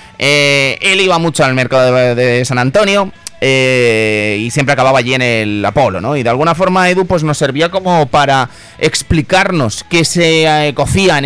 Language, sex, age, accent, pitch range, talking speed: Spanish, male, 30-49, Spanish, 135-190 Hz, 180 wpm